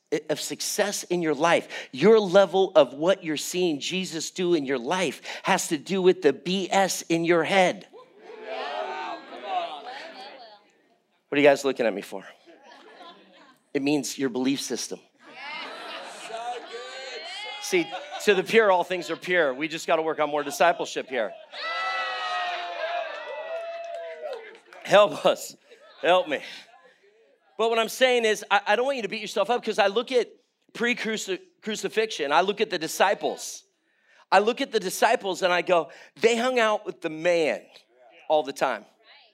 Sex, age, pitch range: male, 40-59, 165-220 Hz